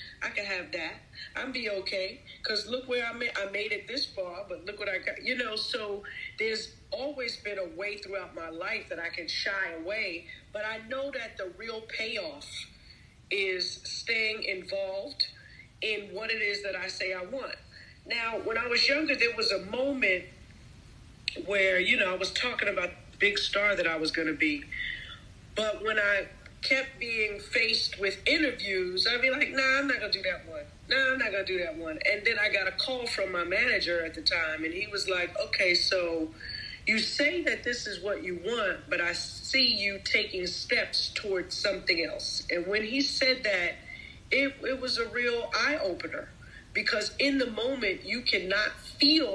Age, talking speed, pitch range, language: 40-59, 195 wpm, 190-265 Hz, English